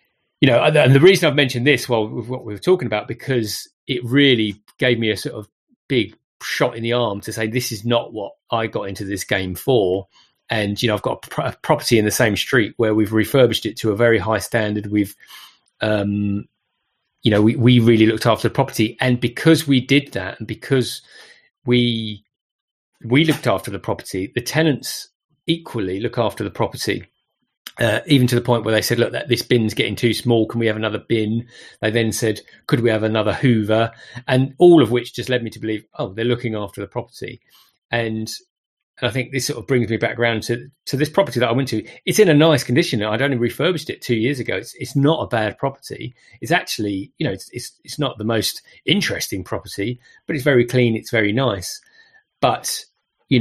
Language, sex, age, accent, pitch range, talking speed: English, male, 30-49, British, 110-135 Hz, 220 wpm